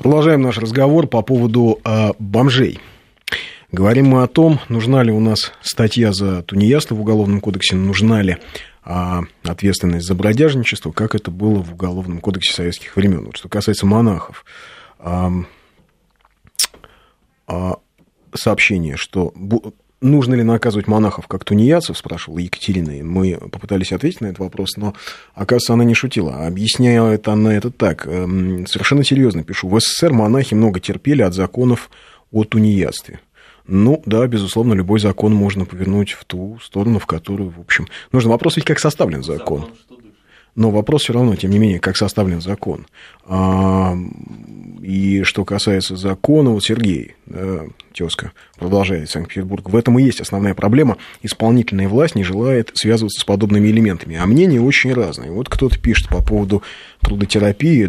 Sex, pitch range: male, 95-115 Hz